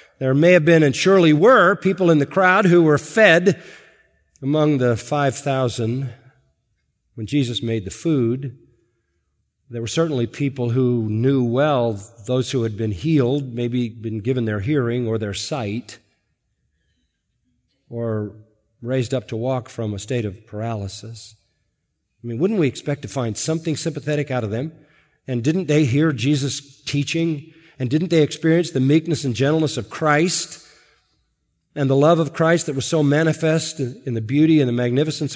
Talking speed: 165 wpm